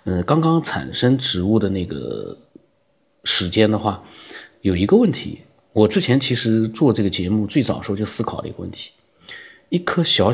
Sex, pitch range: male, 105-155 Hz